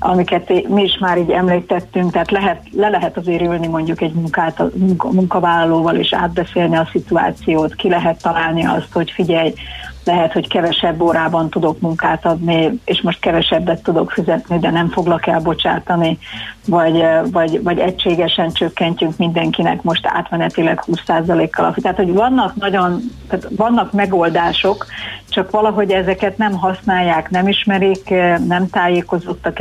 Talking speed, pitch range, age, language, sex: 130 wpm, 165-185 Hz, 30-49, Hungarian, female